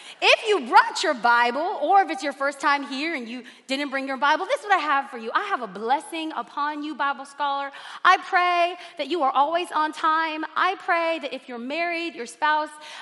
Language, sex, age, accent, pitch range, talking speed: English, female, 30-49, American, 275-360 Hz, 225 wpm